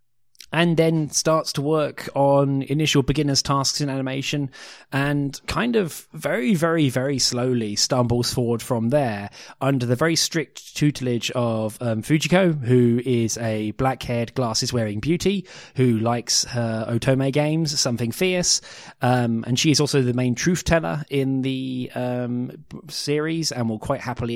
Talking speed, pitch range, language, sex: 150 wpm, 120-145 Hz, English, male